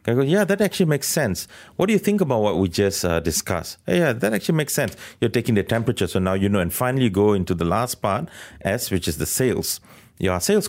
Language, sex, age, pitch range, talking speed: English, male, 30-49, 95-130 Hz, 260 wpm